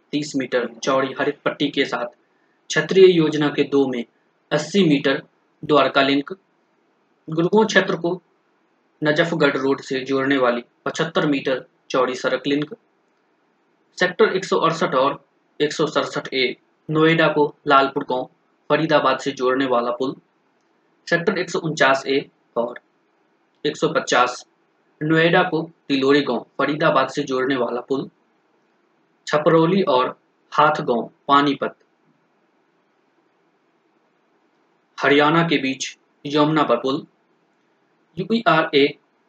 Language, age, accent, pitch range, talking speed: Hindi, 20-39, native, 135-170 Hz, 100 wpm